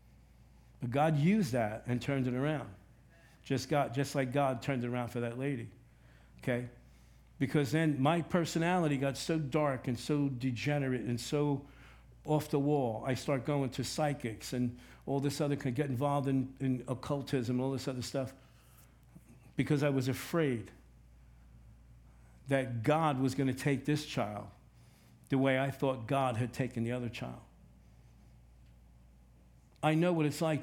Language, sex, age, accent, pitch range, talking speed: English, male, 60-79, American, 120-145 Hz, 160 wpm